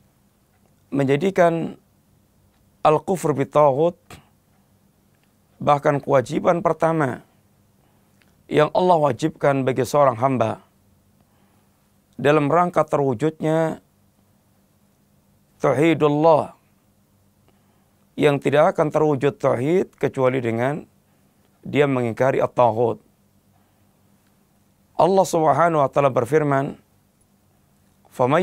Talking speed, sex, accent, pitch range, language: 70 wpm, male, native, 105-160 Hz, Indonesian